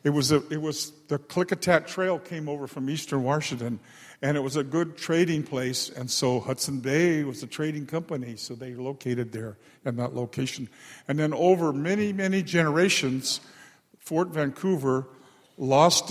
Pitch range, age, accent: 125-155 Hz, 50-69, American